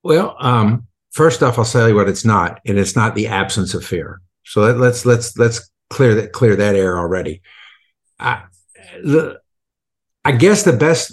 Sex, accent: male, American